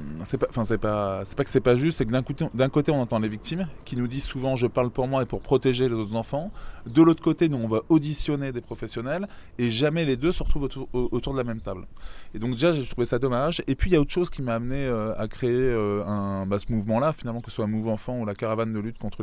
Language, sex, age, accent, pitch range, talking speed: French, male, 20-39, French, 115-145 Hz, 280 wpm